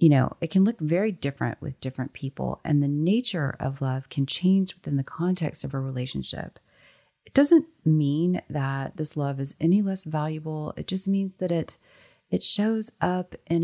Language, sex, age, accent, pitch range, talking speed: English, female, 30-49, American, 140-170 Hz, 185 wpm